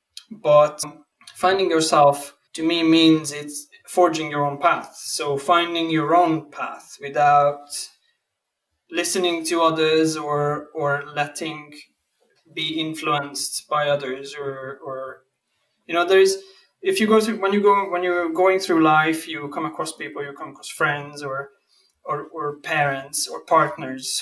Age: 20-39